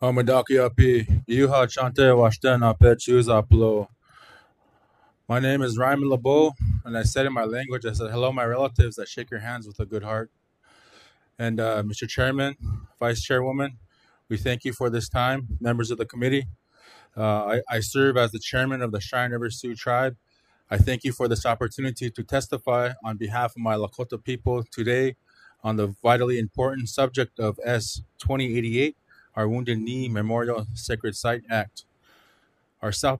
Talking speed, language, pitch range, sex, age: 155 wpm, English, 110-130 Hz, male, 20-39